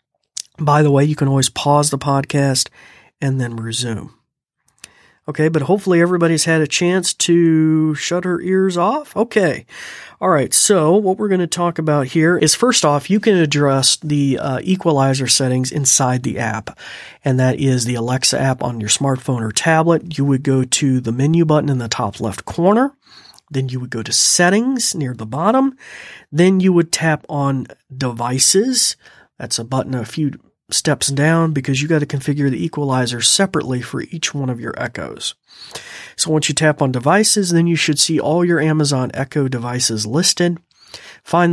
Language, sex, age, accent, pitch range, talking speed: English, male, 40-59, American, 130-165 Hz, 180 wpm